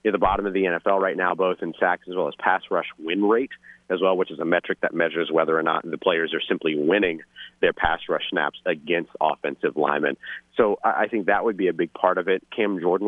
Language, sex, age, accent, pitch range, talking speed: English, male, 30-49, American, 100-130 Hz, 250 wpm